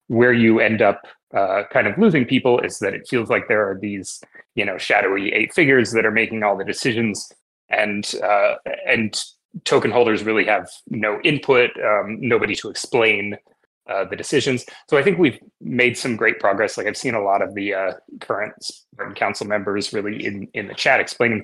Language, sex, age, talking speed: English, male, 30-49, 195 wpm